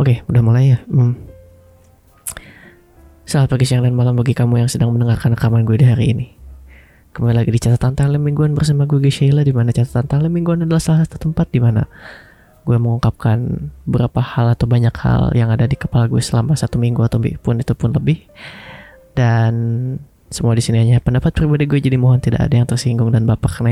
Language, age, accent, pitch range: Indonesian, 20-39, native, 115-130 Hz